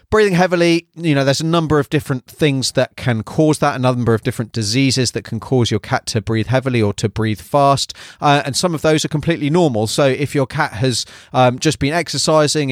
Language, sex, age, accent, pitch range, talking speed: English, male, 30-49, British, 115-140 Hz, 225 wpm